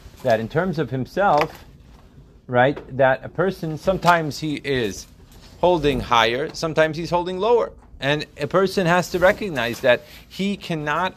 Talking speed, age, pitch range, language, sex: 145 wpm, 30-49, 125-165 Hz, English, male